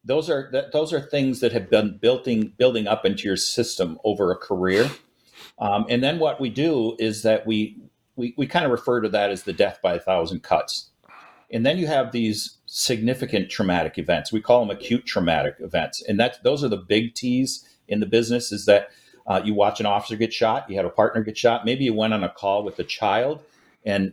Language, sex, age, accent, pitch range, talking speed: English, male, 50-69, American, 105-125 Hz, 225 wpm